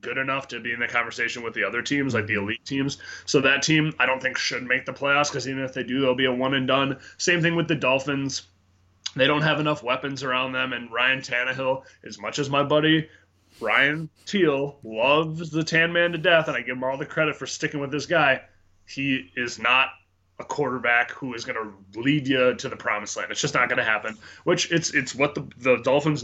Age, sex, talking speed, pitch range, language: 20-39, male, 240 wpm, 120-155 Hz, English